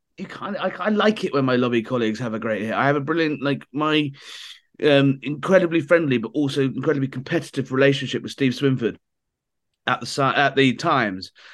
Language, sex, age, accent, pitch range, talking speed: English, male, 30-49, British, 130-165 Hz, 170 wpm